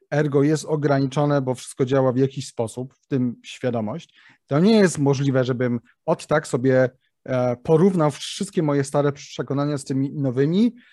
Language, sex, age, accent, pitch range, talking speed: Polish, male, 30-49, native, 135-165 Hz, 155 wpm